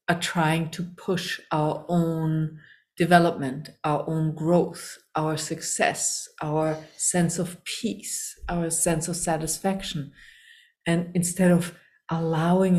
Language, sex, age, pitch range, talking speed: English, female, 50-69, 155-180 Hz, 115 wpm